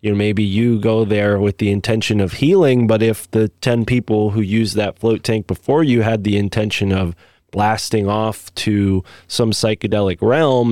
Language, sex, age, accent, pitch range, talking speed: English, male, 20-39, American, 95-110 Hz, 175 wpm